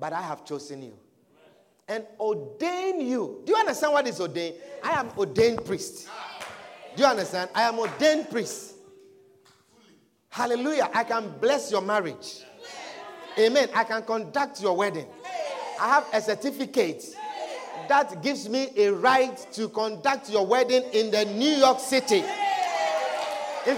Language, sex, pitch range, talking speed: English, male, 215-320 Hz, 140 wpm